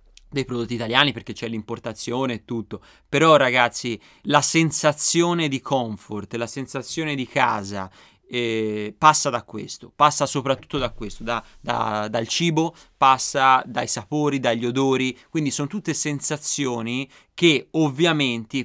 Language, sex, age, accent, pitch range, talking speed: Italian, male, 30-49, native, 120-150 Hz, 125 wpm